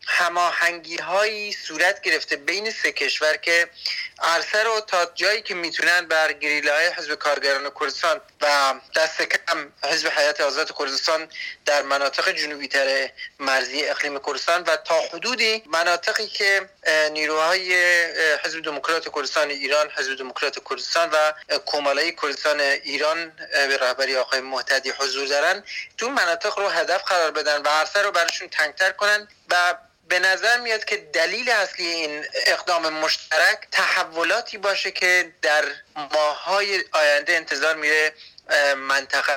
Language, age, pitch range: English, 30-49, 145-180 Hz